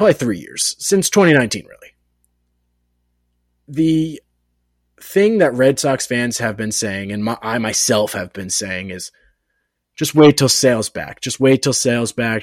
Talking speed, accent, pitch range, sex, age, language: 160 wpm, American, 105-150 Hz, male, 30-49, English